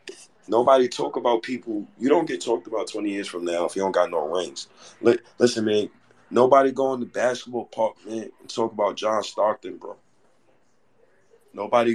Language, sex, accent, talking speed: English, male, American, 175 wpm